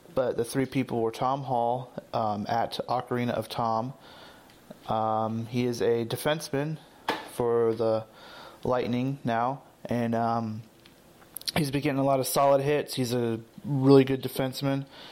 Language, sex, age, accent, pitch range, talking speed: English, male, 30-49, American, 115-140 Hz, 145 wpm